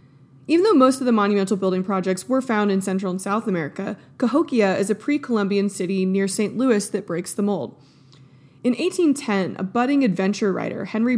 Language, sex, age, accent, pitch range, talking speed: English, female, 20-39, American, 195-240 Hz, 185 wpm